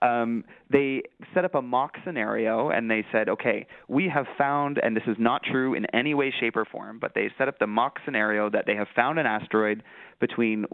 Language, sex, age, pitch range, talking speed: English, male, 20-39, 110-140 Hz, 200 wpm